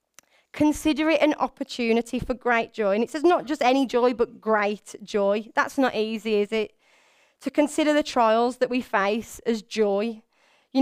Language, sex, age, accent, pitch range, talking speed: English, female, 20-39, British, 220-265 Hz, 175 wpm